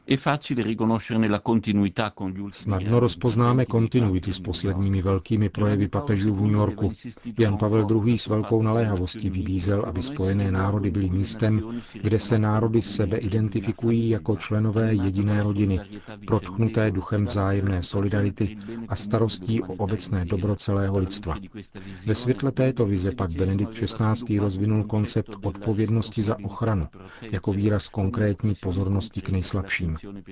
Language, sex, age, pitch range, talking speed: Czech, male, 40-59, 95-110 Hz, 120 wpm